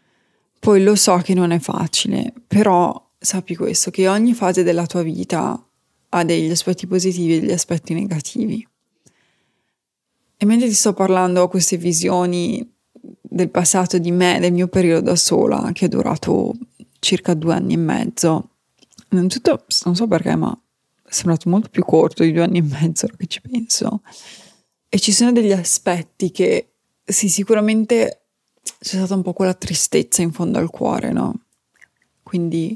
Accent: native